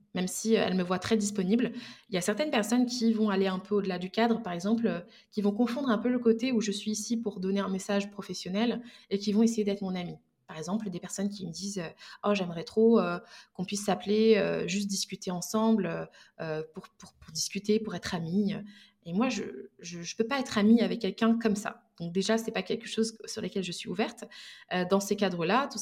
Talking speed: 235 wpm